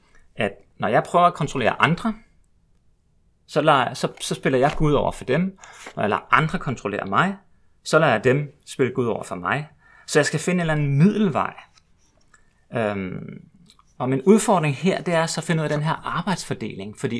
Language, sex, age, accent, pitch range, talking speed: Danish, male, 30-49, native, 115-170 Hz, 195 wpm